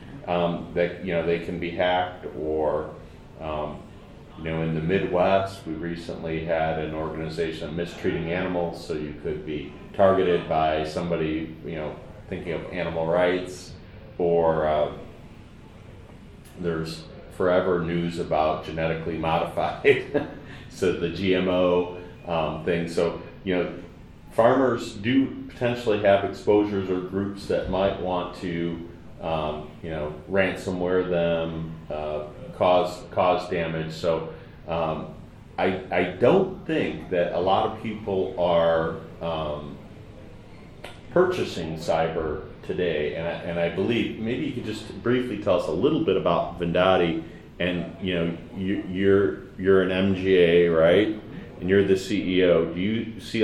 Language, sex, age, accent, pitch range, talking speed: English, male, 40-59, American, 80-100 Hz, 135 wpm